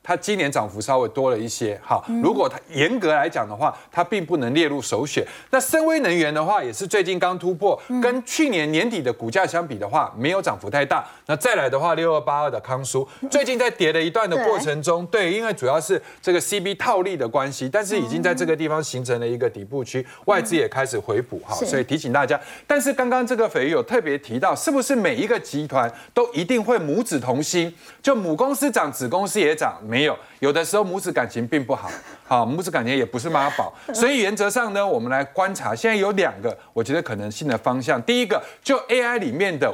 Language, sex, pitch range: Chinese, male, 155-245 Hz